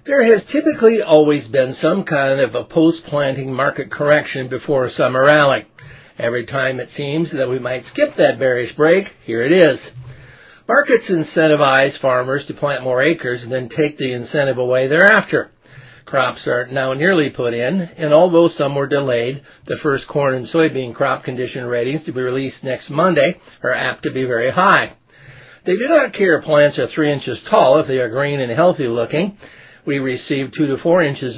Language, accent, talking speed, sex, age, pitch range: English, American, 185 wpm, male, 50-69, 130-160 Hz